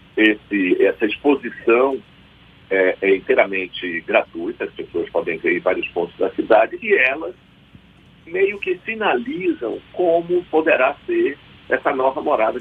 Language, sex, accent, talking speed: Portuguese, male, Brazilian, 125 wpm